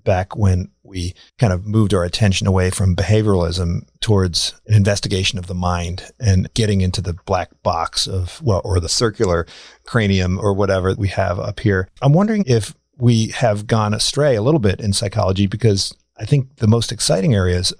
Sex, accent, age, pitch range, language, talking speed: male, American, 40-59, 95-115 Hz, English, 180 wpm